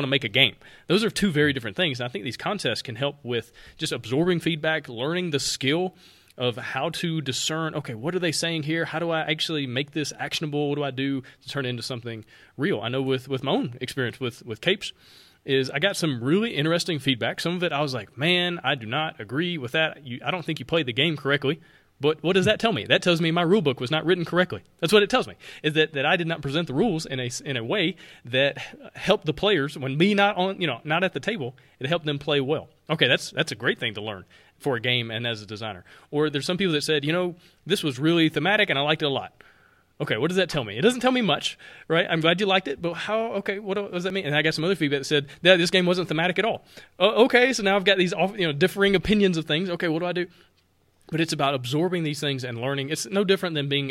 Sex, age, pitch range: male, 30-49, 140-175 Hz